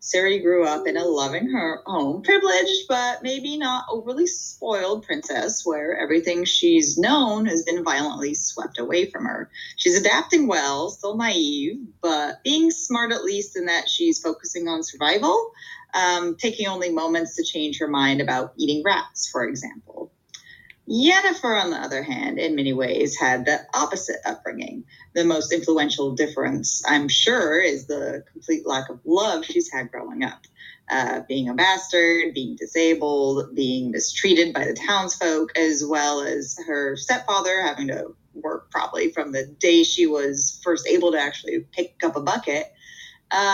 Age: 30-49